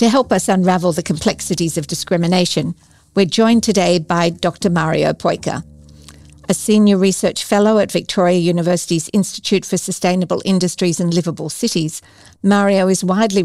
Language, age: English, 50-69